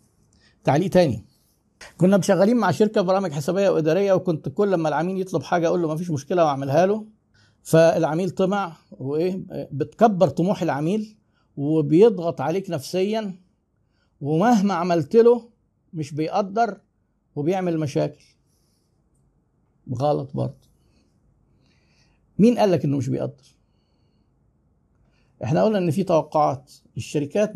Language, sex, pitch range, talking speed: Arabic, male, 140-190 Hz, 115 wpm